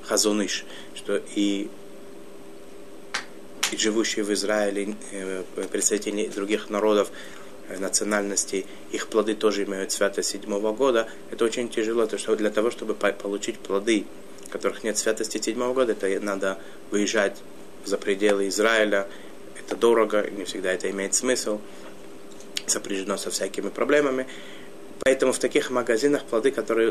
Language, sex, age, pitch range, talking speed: Russian, male, 20-39, 95-115 Hz, 125 wpm